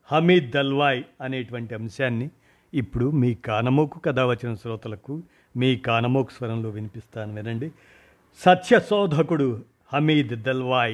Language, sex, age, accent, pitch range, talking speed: Telugu, male, 50-69, native, 125-170 Hz, 95 wpm